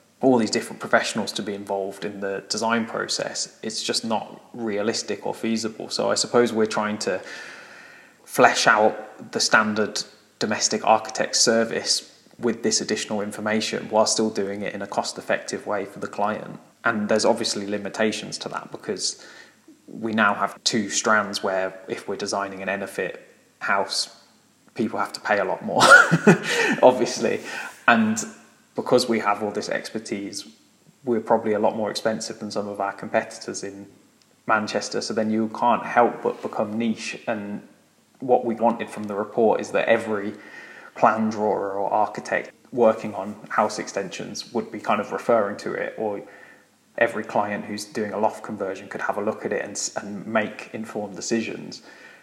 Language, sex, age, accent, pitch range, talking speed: English, male, 20-39, British, 105-115 Hz, 165 wpm